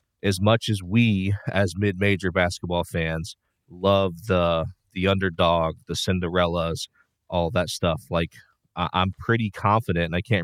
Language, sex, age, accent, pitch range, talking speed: English, male, 30-49, American, 90-105 Hz, 145 wpm